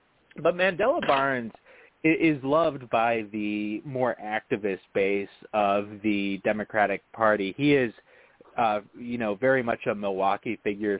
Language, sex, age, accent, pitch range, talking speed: English, male, 30-49, American, 100-135 Hz, 130 wpm